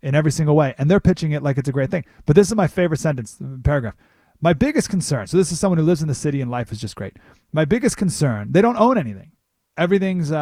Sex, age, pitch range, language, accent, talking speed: male, 30-49, 115-160 Hz, English, American, 260 wpm